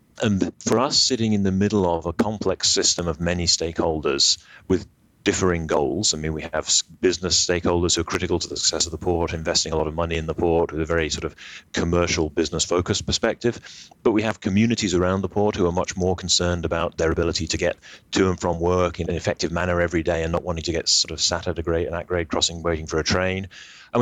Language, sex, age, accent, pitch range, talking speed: English, male, 30-49, British, 85-95 Hz, 235 wpm